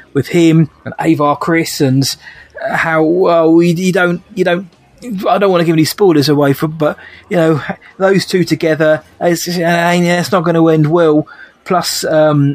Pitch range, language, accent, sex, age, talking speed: 140-165 Hz, English, British, male, 20-39, 180 wpm